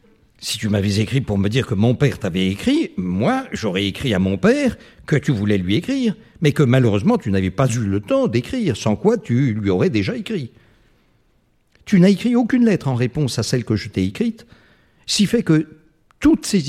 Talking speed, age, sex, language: 210 wpm, 60-79, male, French